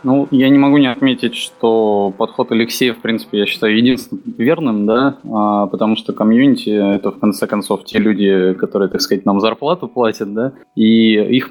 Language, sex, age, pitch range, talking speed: Russian, male, 20-39, 100-115 Hz, 175 wpm